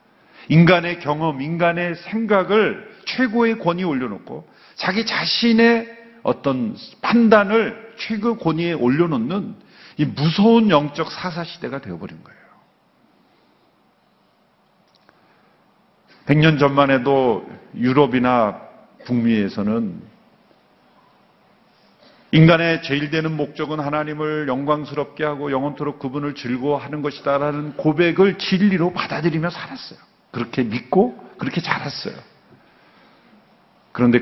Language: Korean